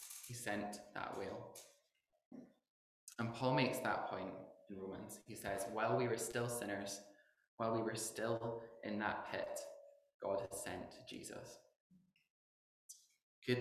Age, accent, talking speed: 20-39, British, 130 wpm